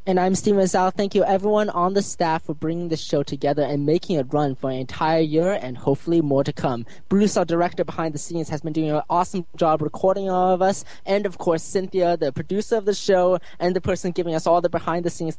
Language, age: English, 20-39